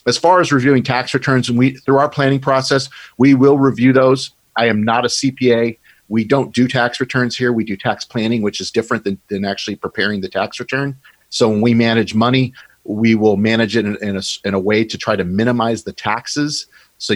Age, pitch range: 40-59, 105-125 Hz